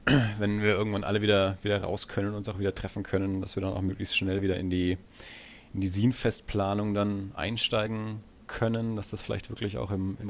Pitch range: 100-115 Hz